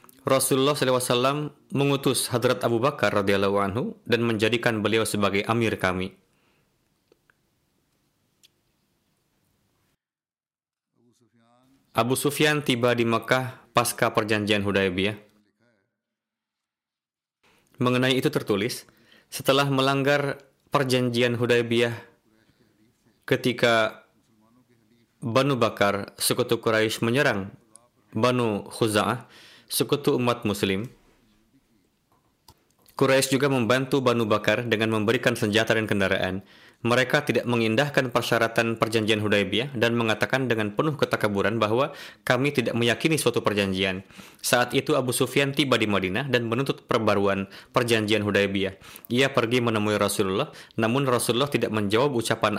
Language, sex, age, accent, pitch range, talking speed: Indonesian, male, 20-39, native, 110-130 Hz, 100 wpm